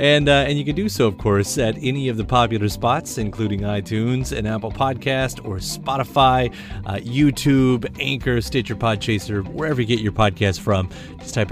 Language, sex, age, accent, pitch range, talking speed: English, male, 30-49, American, 110-155 Hz, 180 wpm